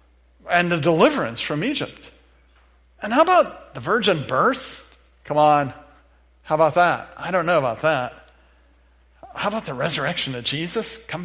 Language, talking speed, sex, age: English, 150 wpm, male, 50-69